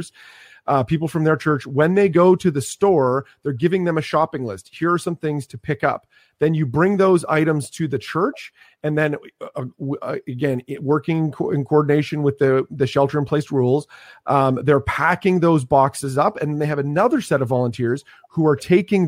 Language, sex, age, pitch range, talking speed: English, male, 30-49, 130-155 Hz, 195 wpm